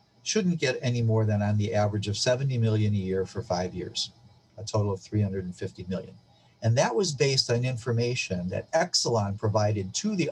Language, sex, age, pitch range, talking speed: English, male, 50-69, 100-120 Hz, 185 wpm